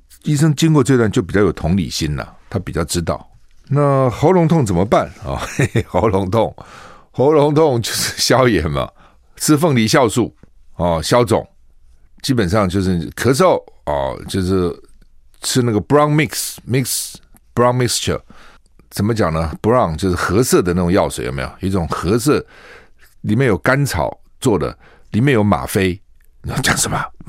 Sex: male